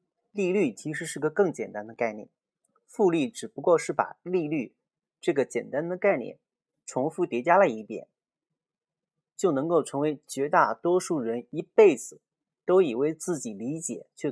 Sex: male